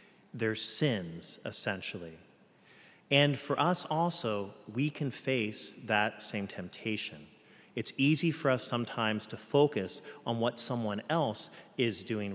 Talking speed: 125 wpm